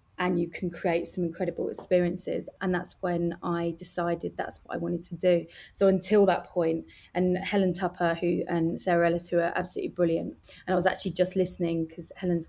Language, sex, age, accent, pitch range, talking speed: English, female, 20-39, British, 170-185 Hz, 195 wpm